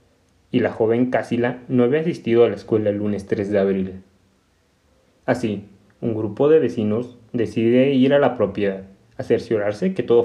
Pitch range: 100-120 Hz